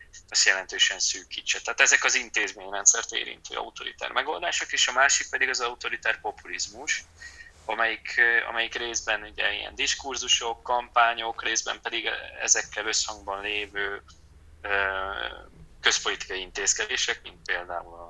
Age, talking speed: 20-39, 110 wpm